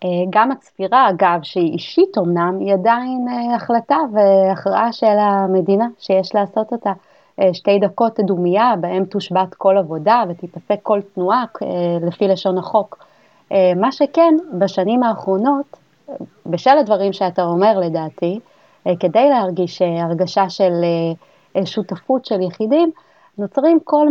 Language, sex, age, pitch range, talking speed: Hebrew, female, 30-49, 190-255 Hz, 115 wpm